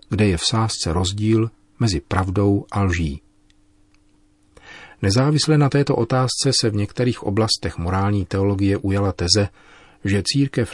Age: 40-59